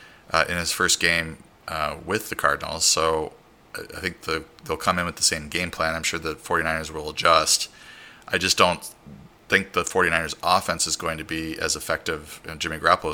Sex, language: male, English